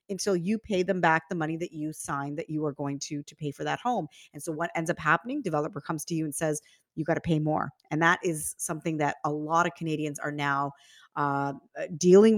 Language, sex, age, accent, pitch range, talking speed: English, female, 30-49, American, 155-195 Hz, 240 wpm